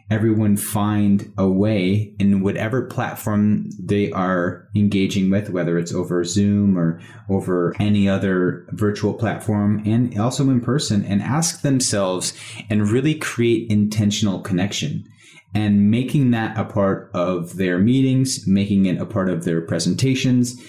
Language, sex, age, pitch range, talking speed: English, male, 30-49, 95-120 Hz, 140 wpm